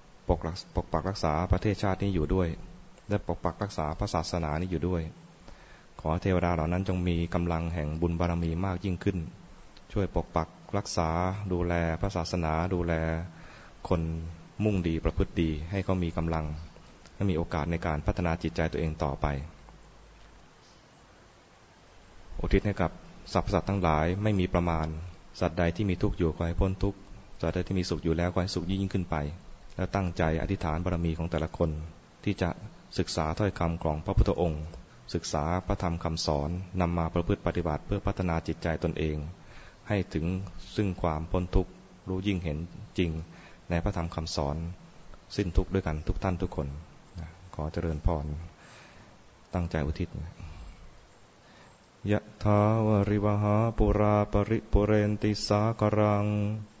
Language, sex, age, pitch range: English, male, 20-39, 80-100 Hz